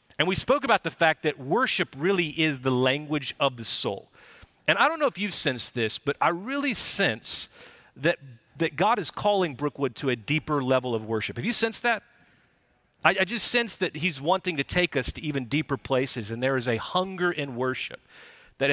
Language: English